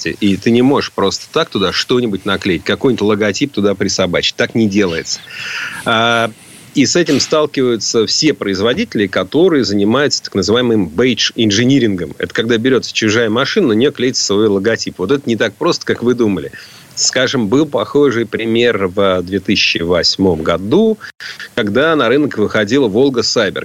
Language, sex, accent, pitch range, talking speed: Russian, male, native, 100-130 Hz, 145 wpm